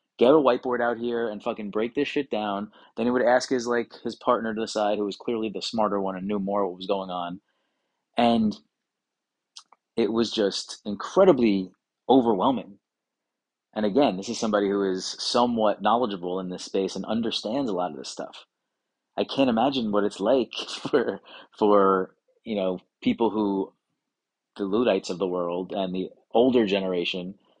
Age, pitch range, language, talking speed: 30-49, 95-115 Hz, English, 175 wpm